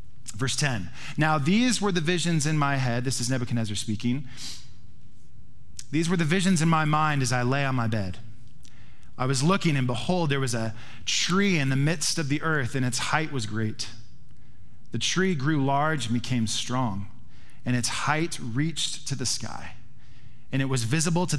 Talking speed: 185 wpm